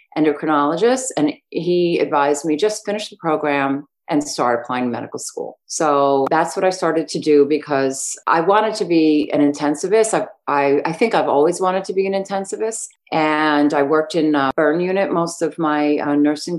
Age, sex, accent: 40-59, female, American